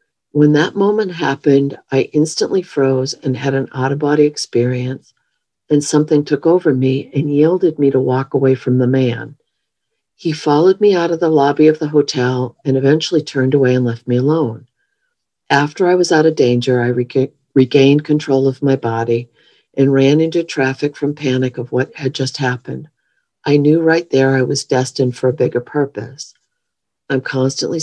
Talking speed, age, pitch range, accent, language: 175 wpm, 50-69, 125-150 Hz, American, English